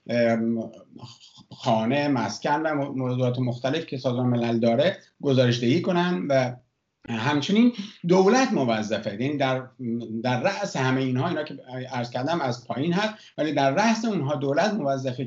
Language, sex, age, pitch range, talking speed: Persian, male, 50-69, 130-185 Hz, 135 wpm